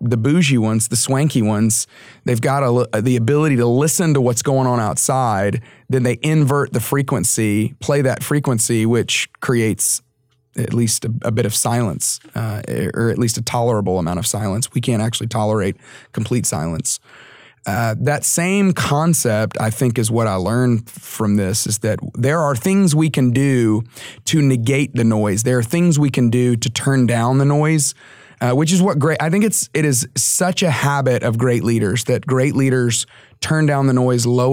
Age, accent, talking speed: 30-49, American, 190 wpm